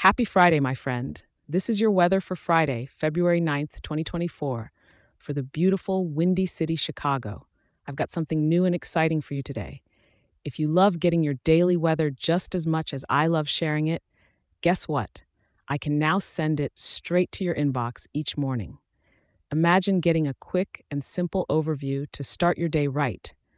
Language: English